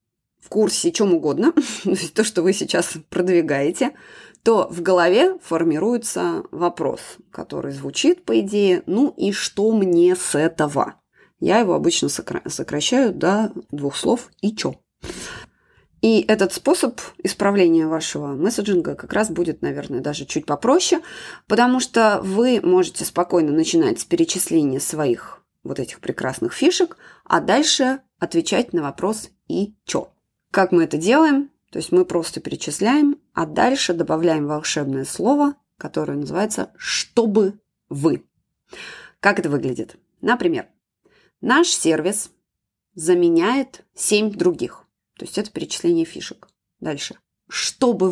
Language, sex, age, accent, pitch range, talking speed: Russian, female, 20-39, native, 170-265 Hz, 125 wpm